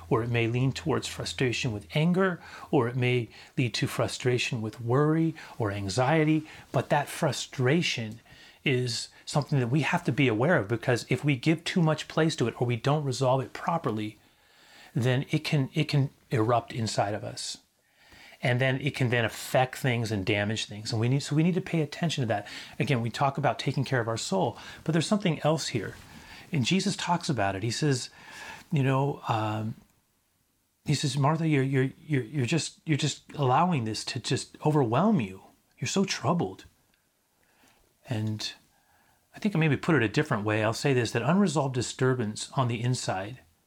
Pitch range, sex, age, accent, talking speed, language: 115-150 Hz, male, 40-59, American, 190 wpm, English